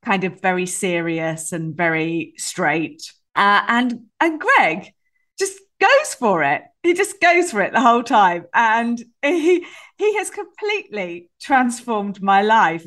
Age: 40-59